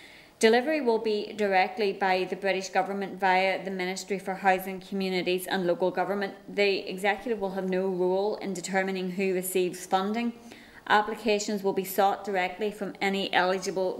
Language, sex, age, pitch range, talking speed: English, female, 20-39, 185-205 Hz, 155 wpm